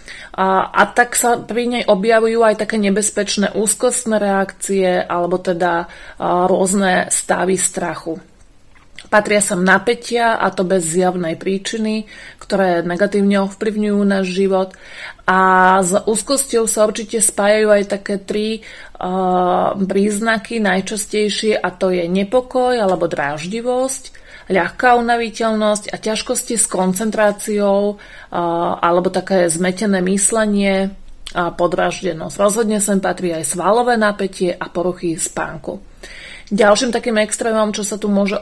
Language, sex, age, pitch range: Slovak, female, 30-49, 185-210 Hz